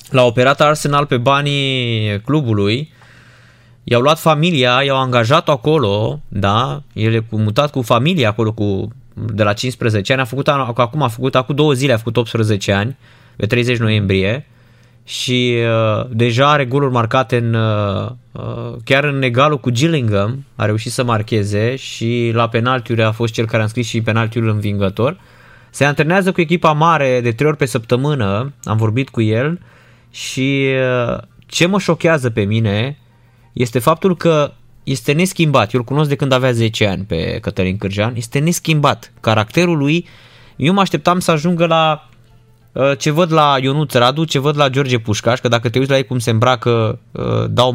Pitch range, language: 115-145 Hz, Romanian